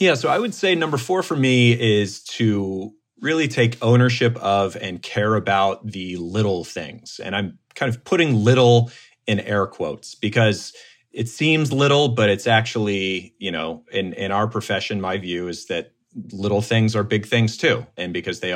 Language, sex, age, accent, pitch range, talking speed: English, male, 30-49, American, 100-120 Hz, 180 wpm